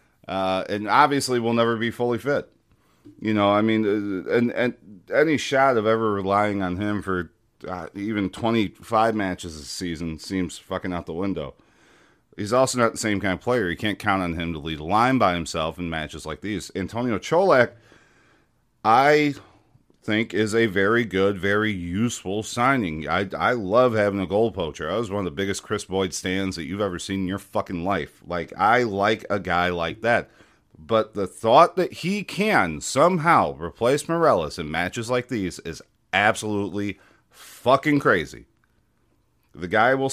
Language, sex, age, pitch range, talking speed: English, male, 40-59, 95-120 Hz, 180 wpm